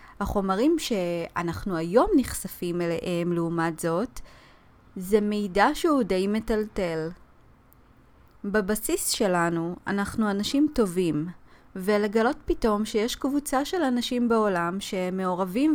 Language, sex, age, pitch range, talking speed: Hebrew, female, 20-39, 185-245 Hz, 95 wpm